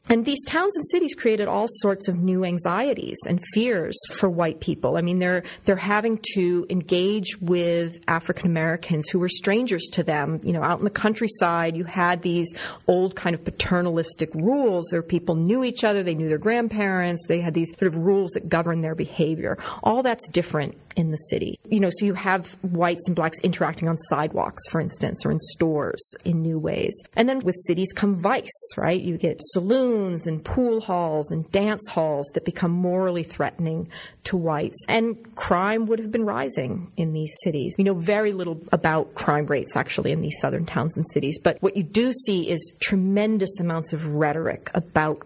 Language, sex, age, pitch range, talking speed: English, female, 30-49, 165-200 Hz, 190 wpm